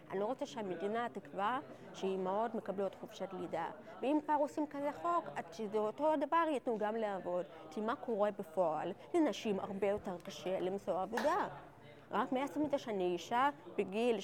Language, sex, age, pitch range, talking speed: Hebrew, female, 30-49, 195-285 Hz, 160 wpm